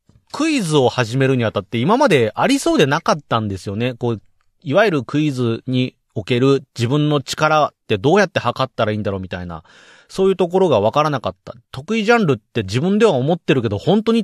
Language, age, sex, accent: Japanese, 30-49, male, native